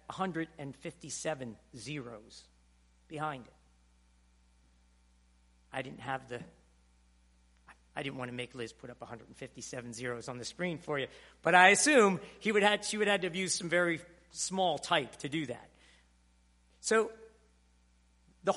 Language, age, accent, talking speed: English, 50-69, American, 155 wpm